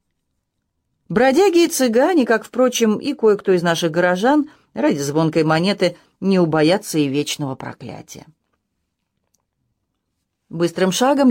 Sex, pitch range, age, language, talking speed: female, 160-220 Hz, 40-59, English, 105 wpm